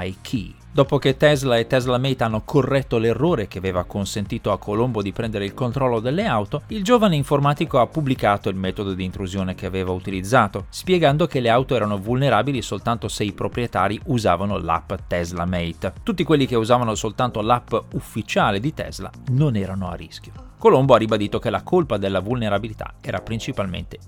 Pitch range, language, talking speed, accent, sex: 100-135 Hz, Italian, 175 wpm, native, male